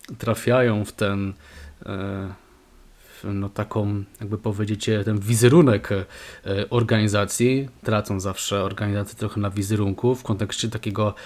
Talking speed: 105 wpm